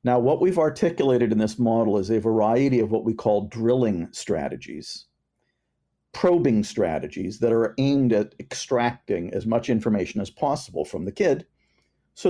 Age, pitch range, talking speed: 50-69, 115-175 Hz, 155 wpm